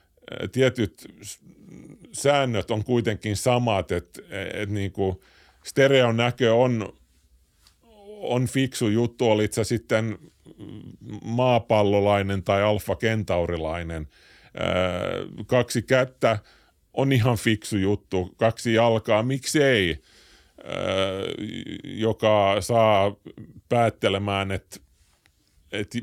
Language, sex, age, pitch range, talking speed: Finnish, male, 30-49, 95-125 Hz, 90 wpm